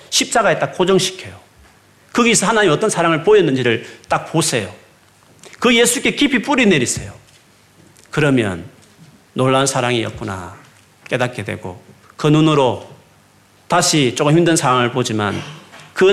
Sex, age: male, 40-59